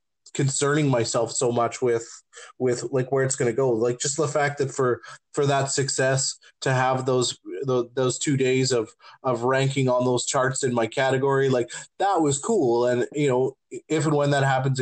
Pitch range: 125-145 Hz